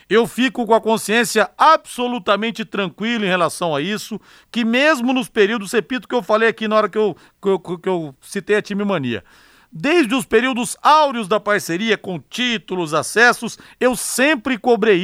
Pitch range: 205-245 Hz